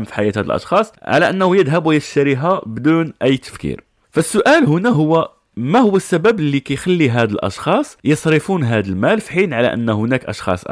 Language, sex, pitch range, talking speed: Arabic, male, 110-160 Hz, 170 wpm